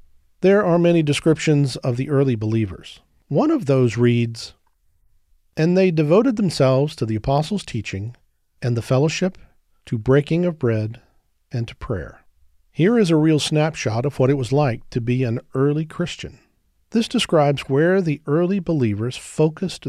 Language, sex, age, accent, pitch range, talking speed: English, male, 40-59, American, 115-160 Hz, 155 wpm